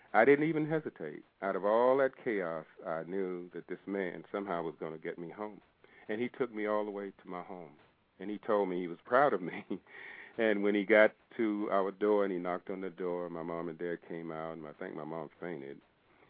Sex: male